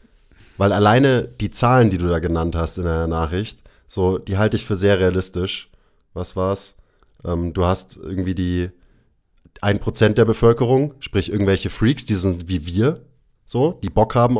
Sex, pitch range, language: male, 90-110 Hz, German